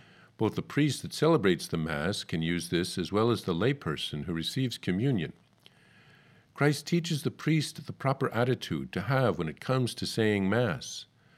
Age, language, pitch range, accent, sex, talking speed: 50-69, English, 95-140 Hz, American, male, 175 wpm